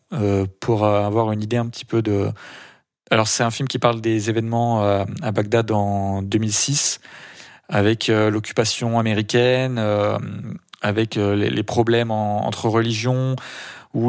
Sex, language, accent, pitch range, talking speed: male, French, French, 105-120 Hz, 130 wpm